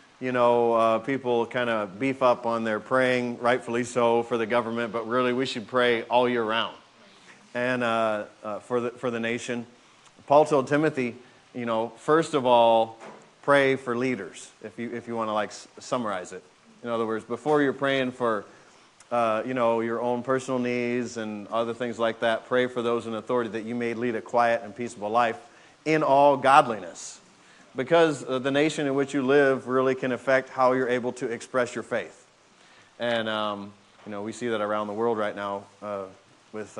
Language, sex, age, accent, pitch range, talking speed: English, male, 40-59, American, 115-130 Hz, 195 wpm